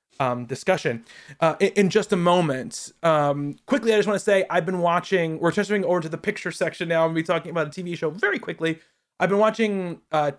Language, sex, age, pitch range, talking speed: English, male, 20-39, 150-190 Hz, 245 wpm